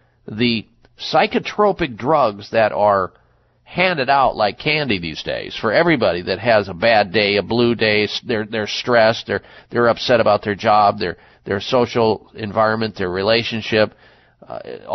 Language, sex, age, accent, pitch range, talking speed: English, male, 50-69, American, 105-130 Hz, 150 wpm